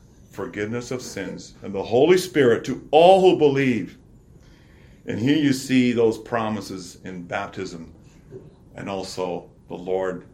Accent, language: American, English